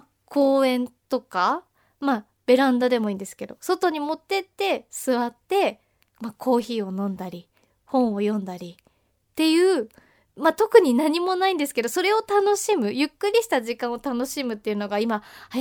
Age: 20-39